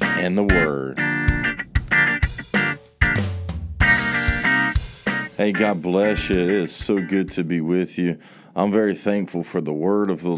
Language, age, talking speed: English, 50-69, 135 wpm